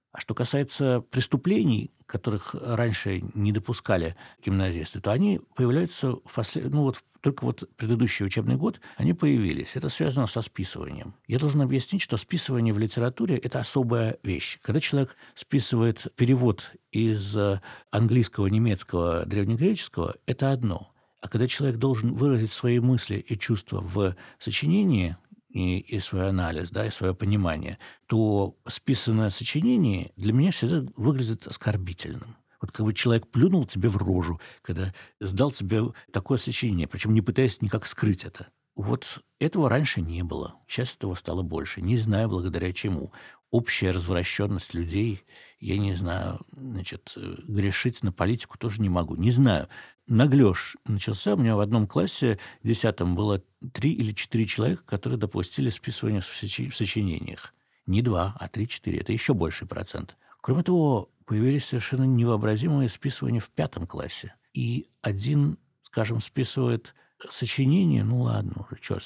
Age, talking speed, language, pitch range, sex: 60-79, 140 wpm, Russian, 100-130 Hz, male